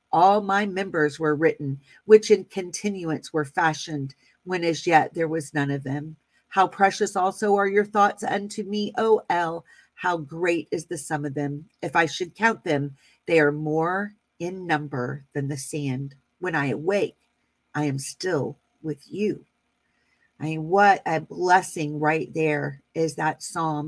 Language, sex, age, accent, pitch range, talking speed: English, female, 40-59, American, 155-195 Hz, 165 wpm